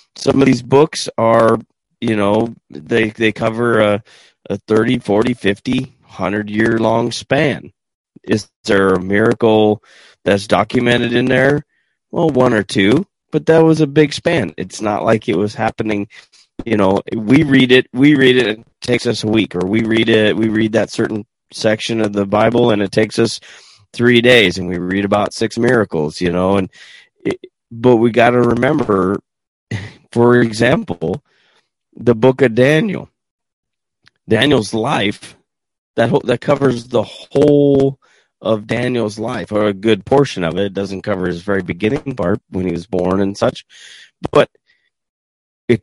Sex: male